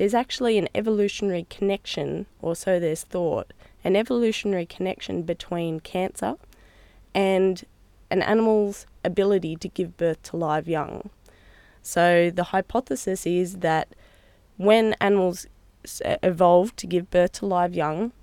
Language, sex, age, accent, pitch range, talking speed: English, female, 20-39, Australian, 165-195 Hz, 125 wpm